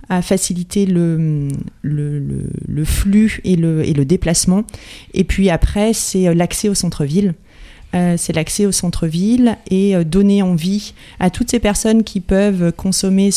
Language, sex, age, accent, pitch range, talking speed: French, female, 30-49, French, 170-195 Hz, 155 wpm